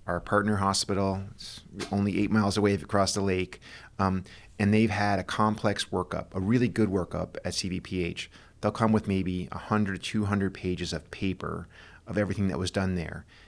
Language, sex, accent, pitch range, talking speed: English, male, American, 90-105 Hz, 175 wpm